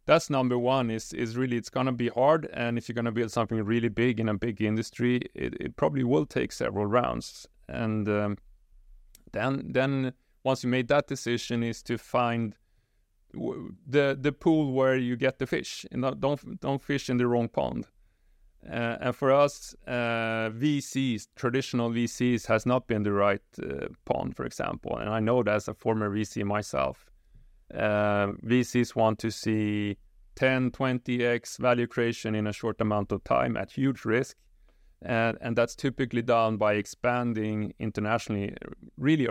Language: English